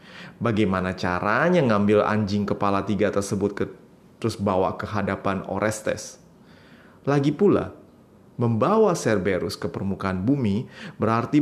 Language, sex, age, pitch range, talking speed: Indonesian, male, 30-49, 100-135 Hz, 110 wpm